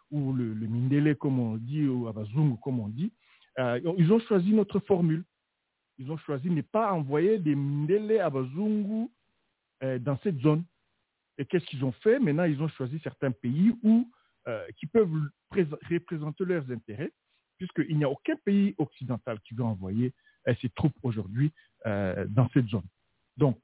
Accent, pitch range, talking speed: French, 120-170 Hz, 170 wpm